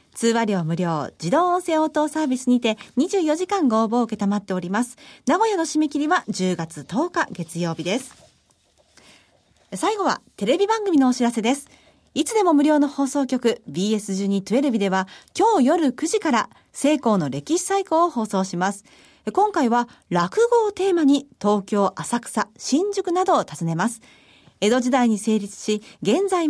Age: 40-59